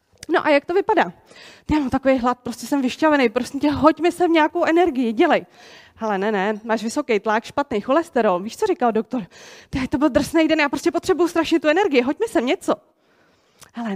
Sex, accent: female, native